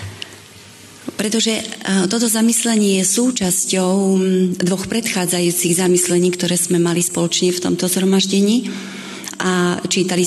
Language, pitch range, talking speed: Slovak, 175-205 Hz, 100 wpm